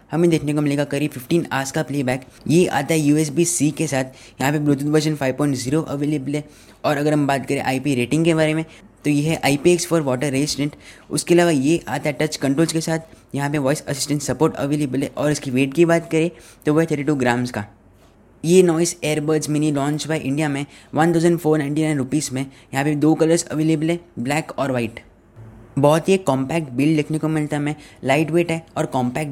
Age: 20-39